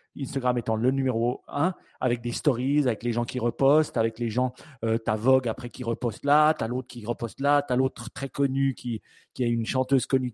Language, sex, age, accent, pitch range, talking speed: French, male, 40-59, French, 115-145 Hz, 240 wpm